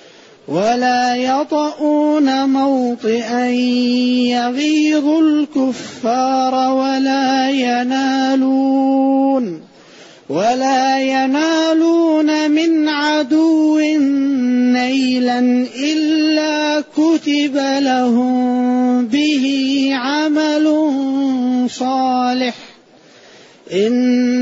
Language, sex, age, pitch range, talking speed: Arabic, male, 30-49, 250-300 Hz, 45 wpm